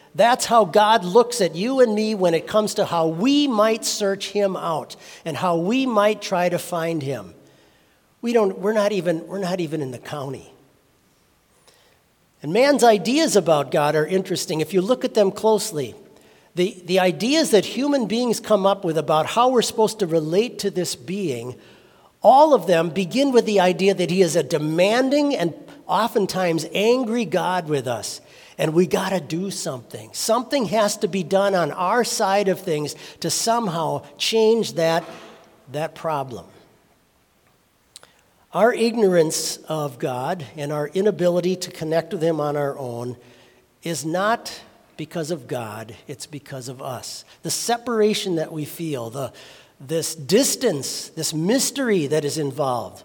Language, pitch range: English, 160-215 Hz